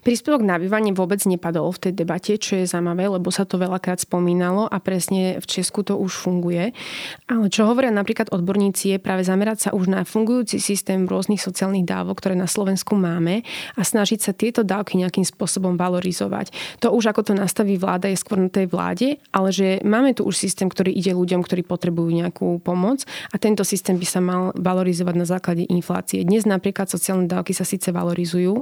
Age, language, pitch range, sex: 20-39, Slovak, 180-200 Hz, female